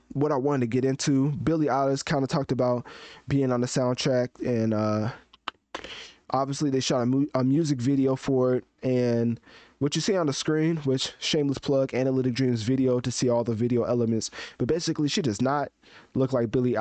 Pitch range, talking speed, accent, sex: 115-140 Hz, 195 wpm, American, male